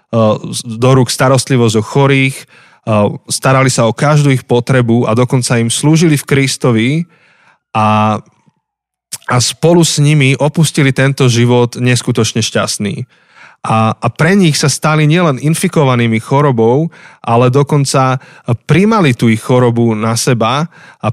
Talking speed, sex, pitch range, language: 130 wpm, male, 115-145 Hz, Slovak